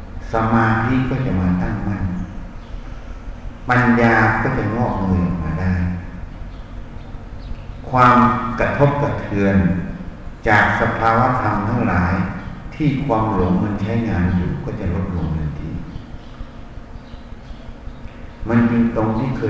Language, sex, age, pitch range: Thai, male, 60-79, 90-115 Hz